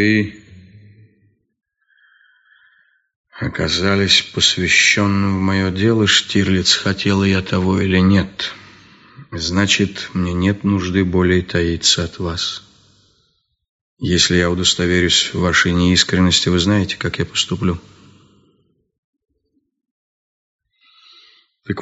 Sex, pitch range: male, 90-105 Hz